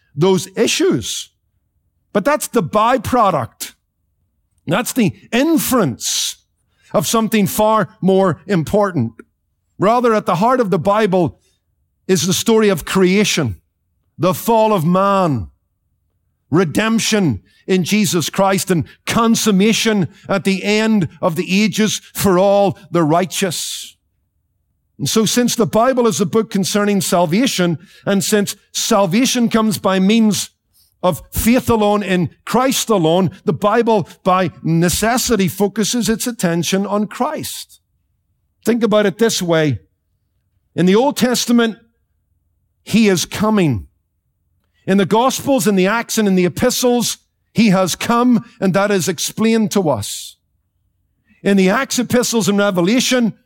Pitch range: 150-220 Hz